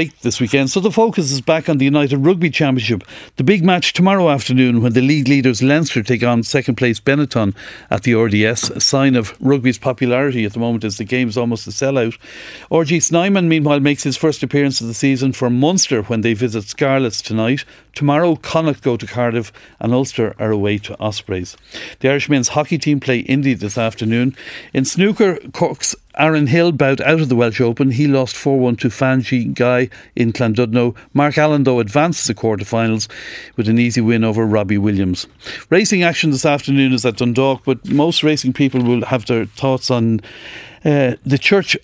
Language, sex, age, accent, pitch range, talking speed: English, male, 60-79, Irish, 115-145 Hz, 190 wpm